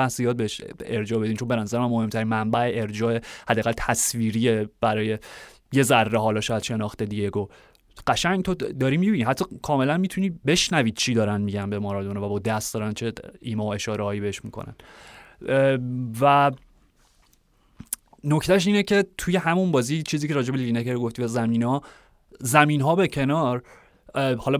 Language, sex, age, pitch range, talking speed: Persian, male, 30-49, 110-135 Hz, 155 wpm